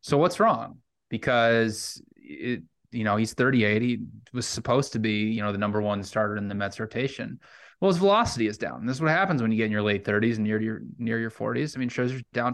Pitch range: 115-140 Hz